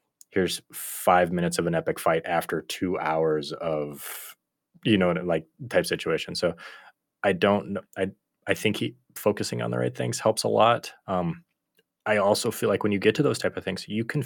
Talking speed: 195 wpm